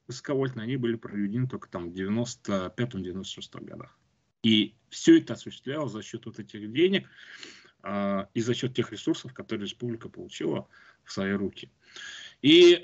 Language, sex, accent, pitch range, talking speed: Russian, male, native, 105-150 Hz, 140 wpm